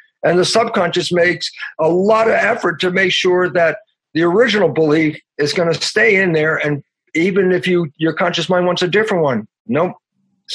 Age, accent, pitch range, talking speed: 50-69, American, 160-215 Hz, 190 wpm